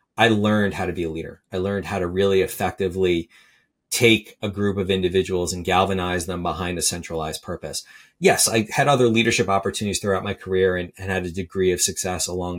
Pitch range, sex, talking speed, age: 90-105 Hz, male, 200 wpm, 30-49